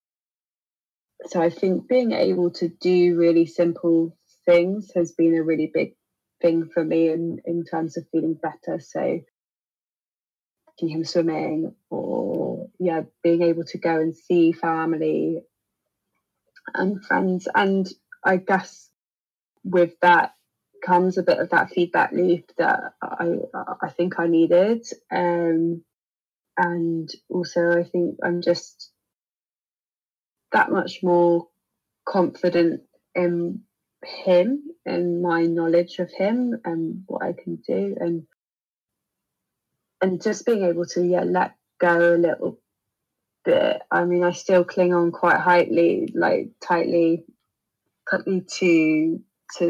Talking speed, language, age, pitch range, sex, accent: 125 wpm, English, 20-39, 165-180 Hz, female, British